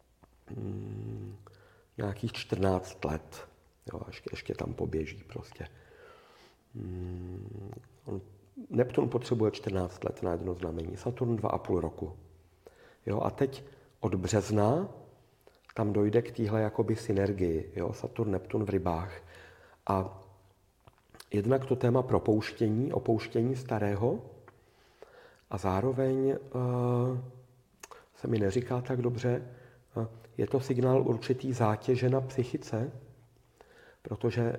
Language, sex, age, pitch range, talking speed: Czech, male, 50-69, 100-125 Hz, 105 wpm